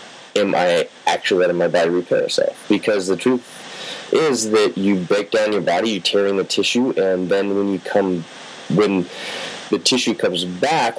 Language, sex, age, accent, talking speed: English, male, 30-49, American, 180 wpm